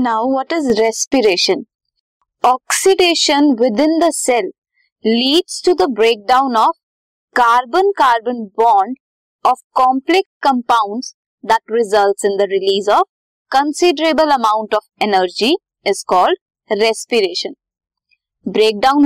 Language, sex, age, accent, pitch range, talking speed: Hindi, female, 20-39, native, 225-345 Hz, 105 wpm